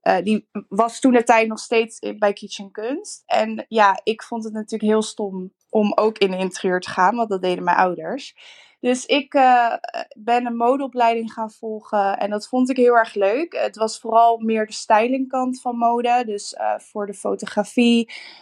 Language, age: Dutch, 20-39